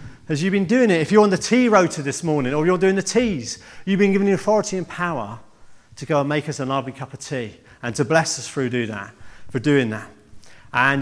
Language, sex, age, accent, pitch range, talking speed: English, male, 40-59, British, 150-225 Hz, 250 wpm